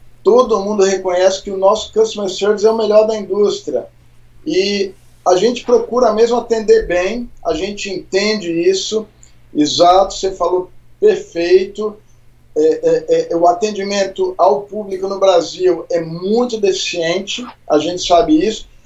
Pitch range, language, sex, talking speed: 170-205 Hz, Portuguese, male, 130 wpm